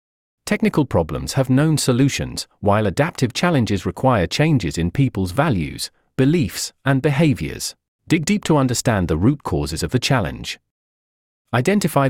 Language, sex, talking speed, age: English, male, 135 wpm, 40-59